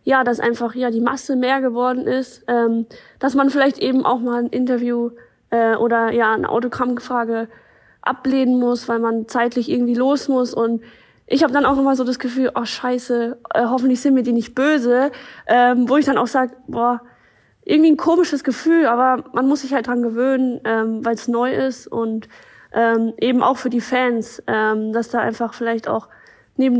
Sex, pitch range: female, 230-255 Hz